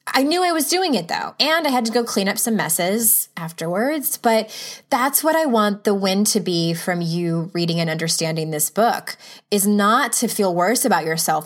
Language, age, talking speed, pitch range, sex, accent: English, 20-39, 210 wpm, 175-225 Hz, female, American